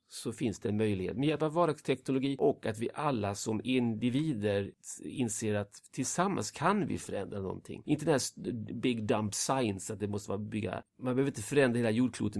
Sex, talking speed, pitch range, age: male, 190 wpm, 105-130 Hz, 40-59